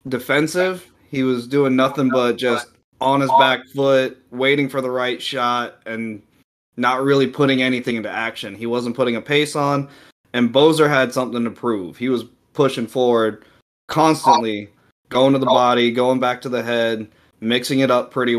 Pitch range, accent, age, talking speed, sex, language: 115-140 Hz, American, 20-39, 175 wpm, male, English